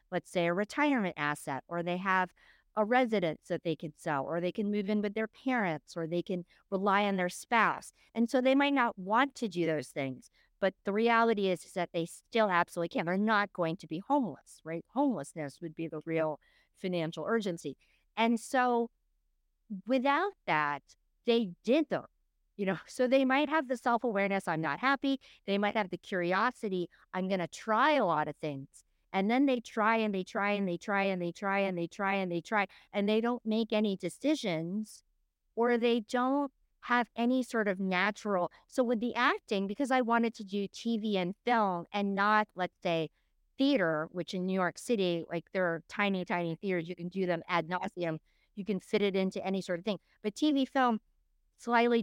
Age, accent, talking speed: 50-69, American, 200 wpm